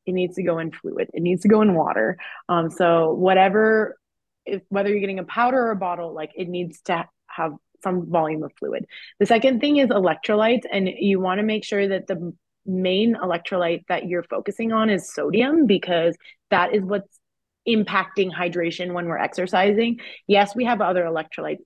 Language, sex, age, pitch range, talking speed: English, female, 20-39, 180-225 Hz, 190 wpm